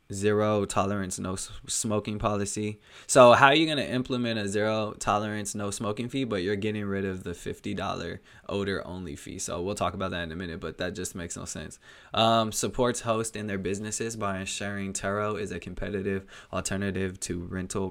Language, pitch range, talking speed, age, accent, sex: English, 95-115 Hz, 195 wpm, 20-39, American, male